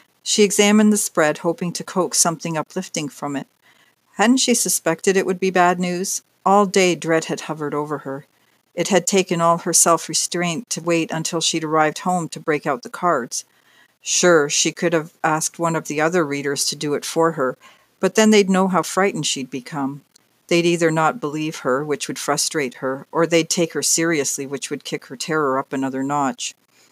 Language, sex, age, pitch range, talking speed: English, female, 50-69, 140-175 Hz, 195 wpm